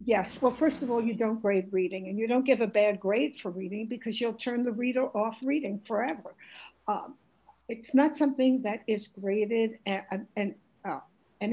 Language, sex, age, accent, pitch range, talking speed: English, female, 60-79, American, 205-255 Hz, 195 wpm